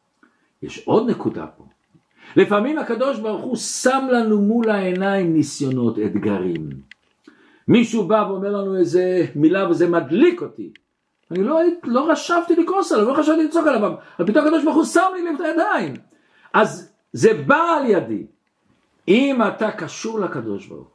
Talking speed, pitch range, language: 150 wpm, 165-240 Hz, Hebrew